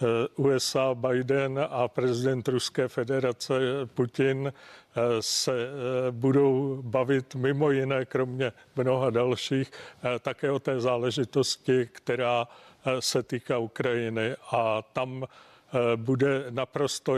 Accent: native